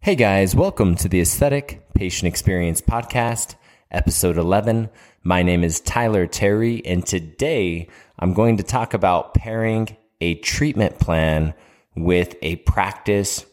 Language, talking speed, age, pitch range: English, 135 wpm, 20-39, 85-110 Hz